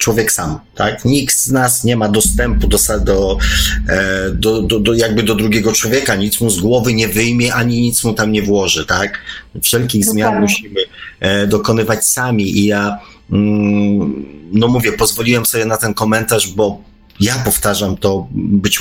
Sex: male